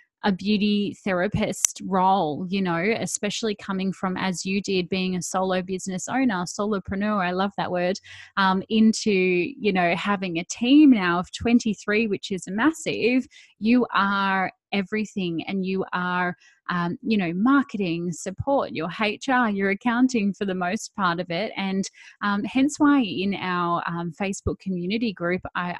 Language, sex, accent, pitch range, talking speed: English, female, Australian, 180-215 Hz, 155 wpm